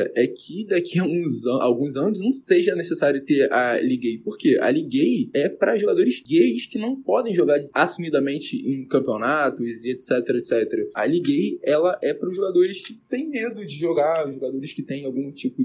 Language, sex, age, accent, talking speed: Portuguese, male, 20-39, Brazilian, 185 wpm